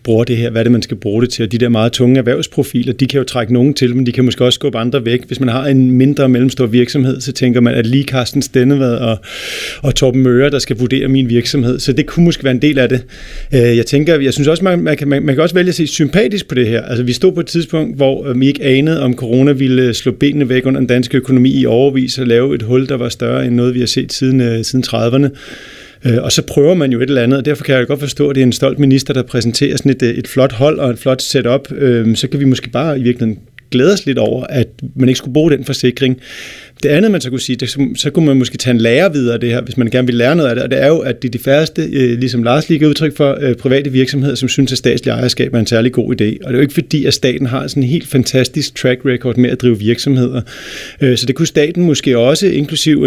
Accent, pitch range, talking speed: native, 125-140 Hz, 280 wpm